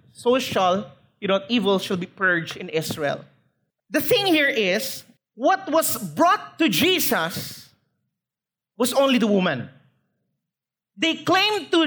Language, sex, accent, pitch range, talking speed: English, male, Filipino, 225-325 Hz, 130 wpm